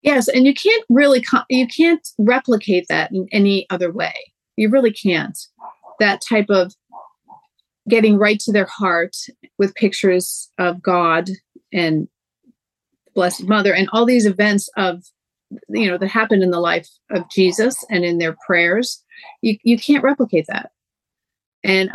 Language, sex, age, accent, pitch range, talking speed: English, female, 40-59, American, 185-230 Hz, 150 wpm